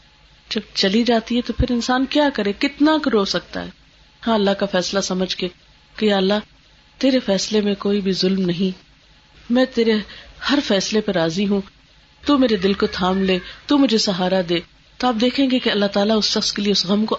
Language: Urdu